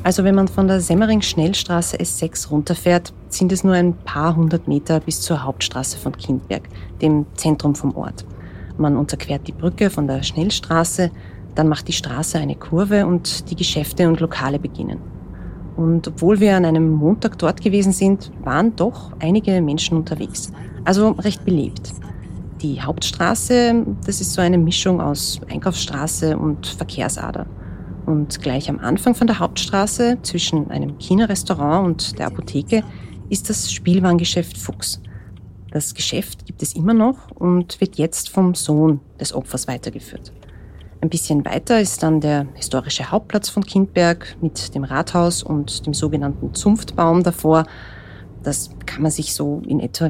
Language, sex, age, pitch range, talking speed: German, female, 30-49, 130-180 Hz, 150 wpm